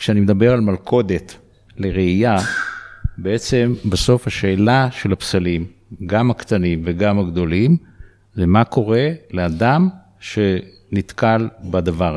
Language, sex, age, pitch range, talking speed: Hebrew, male, 50-69, 95-110 Hz, 100 wpm